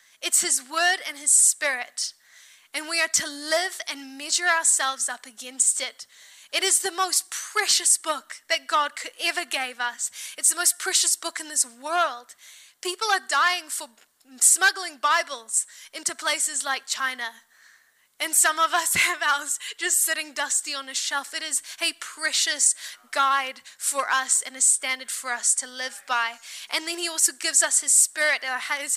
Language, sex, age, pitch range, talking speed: English, female, 10-29, 260-325 Hz, 170 wpm